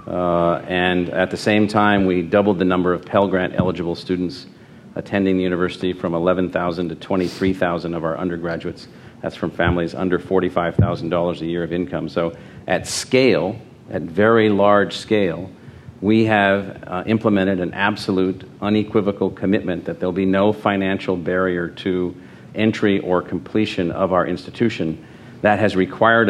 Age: 50-69